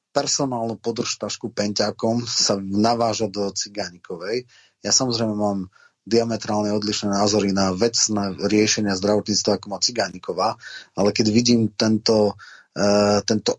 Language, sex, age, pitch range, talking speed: Slovak, male, 30-49, 105-115 Hz, 120 wpm